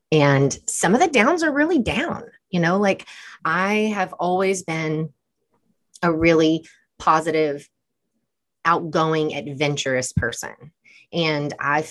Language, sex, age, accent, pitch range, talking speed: English, female, 30-49, American, 145-195 Hz, 115 wpm